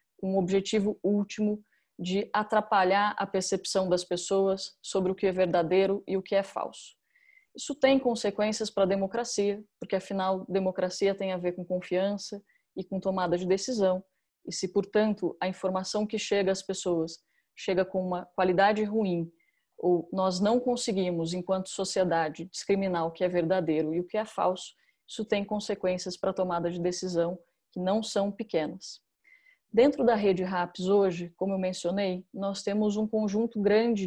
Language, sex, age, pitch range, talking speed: Portuguese, female, 20-39, 185-210 Hz, 165 wpm